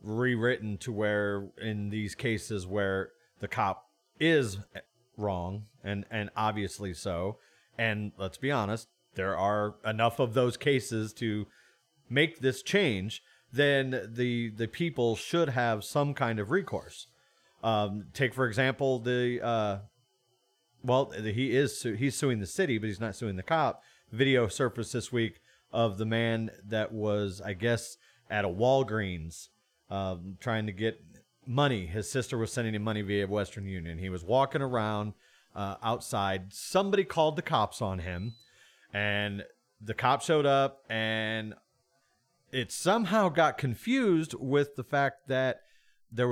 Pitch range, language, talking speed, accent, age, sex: 105-130 Hz, English, 145 wpm, American, 30-49, male